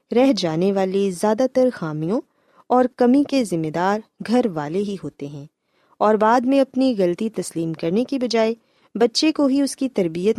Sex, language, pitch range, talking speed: female, Urdu, 170-235 Hz, 180 wpm